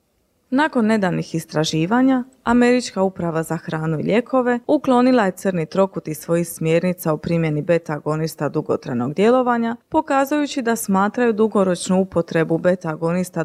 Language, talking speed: Croatian, 125 wpm